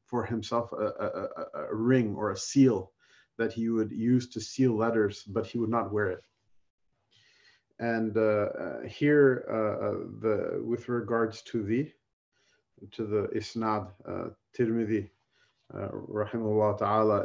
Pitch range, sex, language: 105-120 Hz, male, English